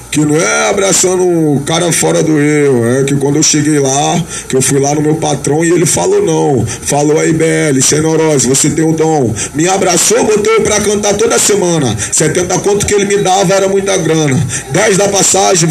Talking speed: 205 wpm